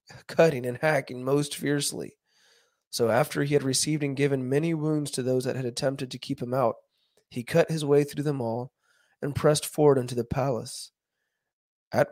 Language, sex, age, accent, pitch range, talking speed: English, male, 20-39, American, 125-140 Hz, 185 wpm